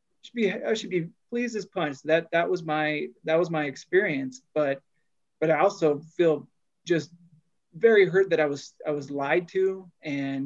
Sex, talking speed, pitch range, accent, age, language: male, 170 wpm, 150-185 Hz, American, 30-49, English